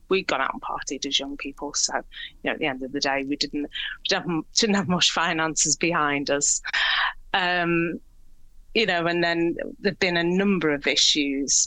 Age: 30-49